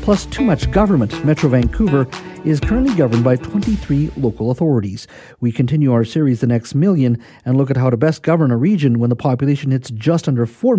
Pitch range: 115-165 Hz